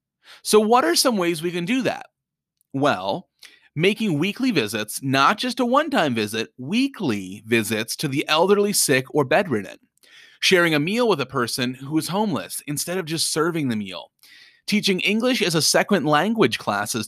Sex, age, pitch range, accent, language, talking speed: male, 30-49, 140-205 Hz, American, English, 170 wpm